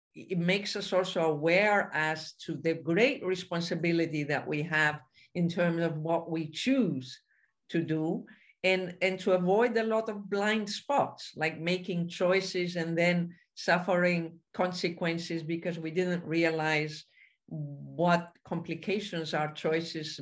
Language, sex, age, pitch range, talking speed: English, female, 50-69, 155-180 Hz, 135 wpm